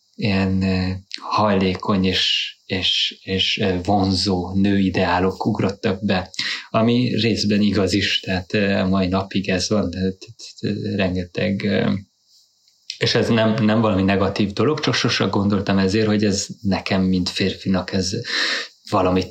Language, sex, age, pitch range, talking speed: Hungarian, male, 20-39, 95-110 Hz, 115 wpm